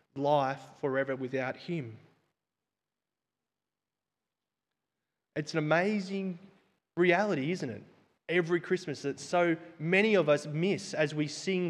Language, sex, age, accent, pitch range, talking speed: English, male, 20-39, Australian, 140-185 Hz, 110 wpm